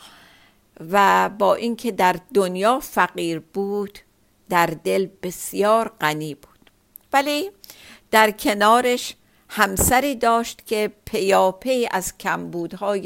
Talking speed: 100 wpm